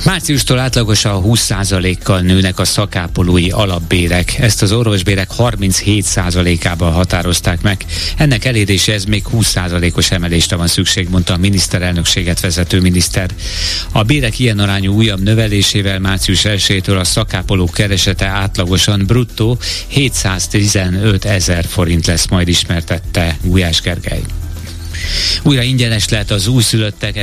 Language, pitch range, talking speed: Hungarian, 90-110 Hz, 115 wpm